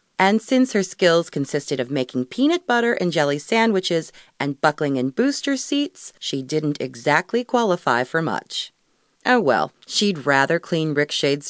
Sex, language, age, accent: female, English, 30-49, American